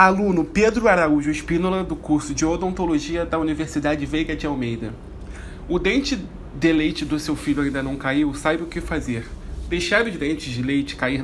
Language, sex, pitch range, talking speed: Portuguese, male, 140-165 Hz, 175 wpm